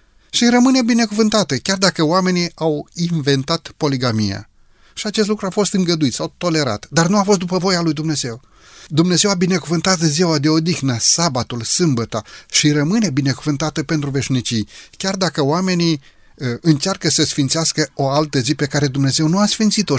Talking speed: 160 wpm